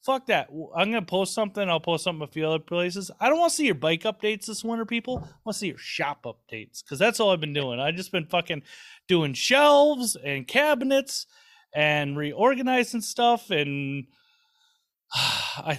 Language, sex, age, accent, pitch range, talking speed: English, male, 30-49, American, 145-200 Hz, 190 wpm